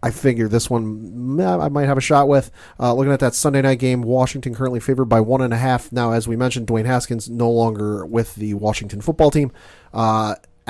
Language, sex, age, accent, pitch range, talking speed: English, male, 30-49, American, 110-130 Hz, 220 wpm